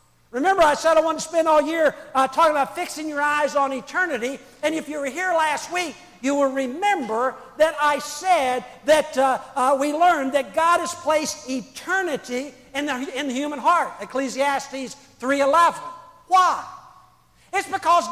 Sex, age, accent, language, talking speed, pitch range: male, 60-79, American, English, 165 wpm, 270-330 Hz